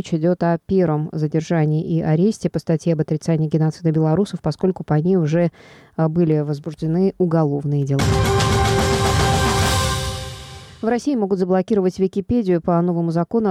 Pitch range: 160-185 Hz